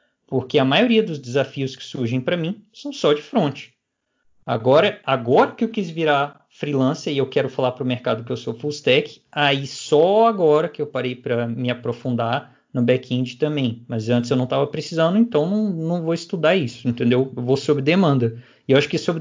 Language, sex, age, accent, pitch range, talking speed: Portuguese, male, 20-39, Brazilian, 125-165 Hz, 205 wpm